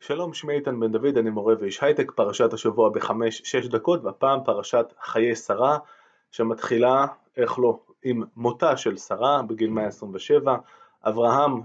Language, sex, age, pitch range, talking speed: Hebrew, male, 20-39, 115-165 Hz, 145 wpm